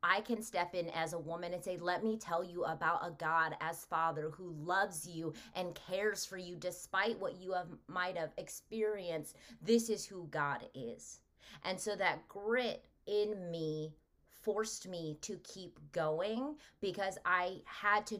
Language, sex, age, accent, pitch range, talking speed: English, female, 20-39, American, 170-215 Hz, 170 wpm